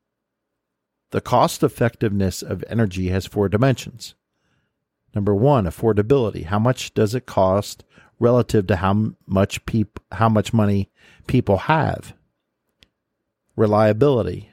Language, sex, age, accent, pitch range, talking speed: English, male, 50-69, American, 100-115 Hz, 110 wpm